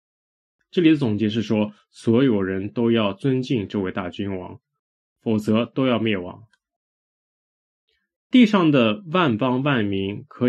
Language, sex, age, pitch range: Chinese, male, 20-39, 105-140 Hz